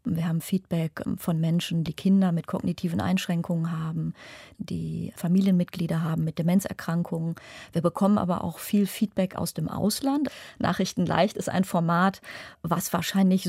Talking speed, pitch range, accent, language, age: 140 wpm, 170-200 Hz, German, German, 30-49